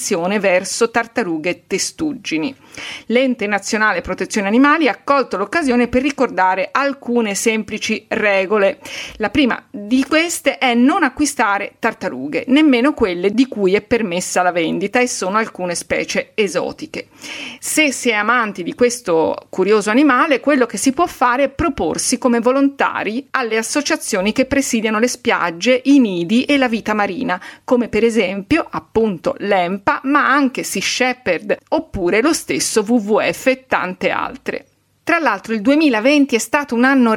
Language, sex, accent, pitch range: Italian, female, native, 215-280 Hz